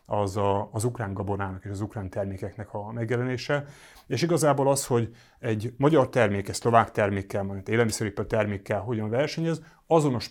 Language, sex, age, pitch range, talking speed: Hungarian, male, 30-49, 105-135 Hz, 150 wpm